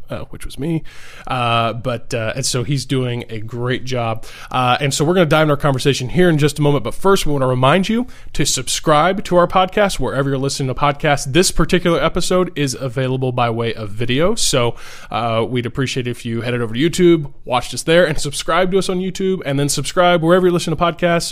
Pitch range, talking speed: 120-155 Hz, 235 wpm